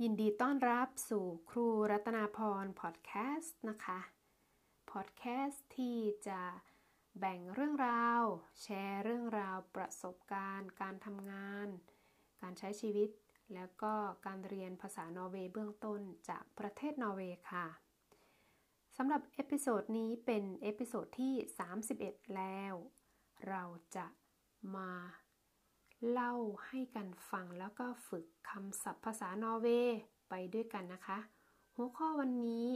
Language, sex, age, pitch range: Thai, female, 20-39, 195-250 Hz